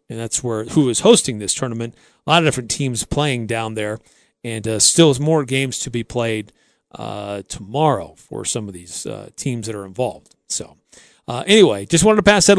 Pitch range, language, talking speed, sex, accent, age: 125-165 Hz, English, 210 wpm, male, American, 40-59